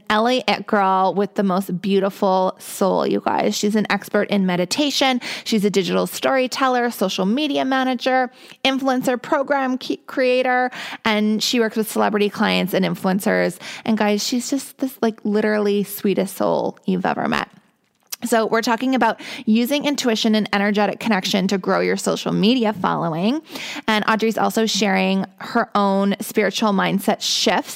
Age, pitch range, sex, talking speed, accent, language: 20-39, 195-240 Hz, female, 150 wpm, American, English